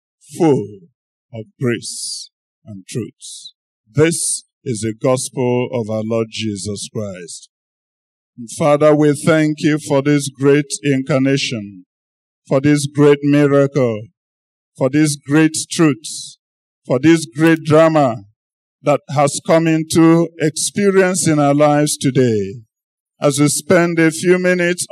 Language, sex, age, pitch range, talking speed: English, male, 50-69, 140-200 Hz, 120 wpm